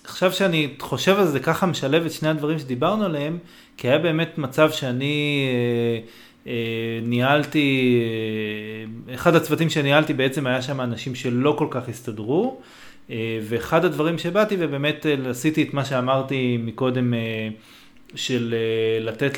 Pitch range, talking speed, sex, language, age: 125-170 Hz, 145 wpm, male, Hebrew, 30-49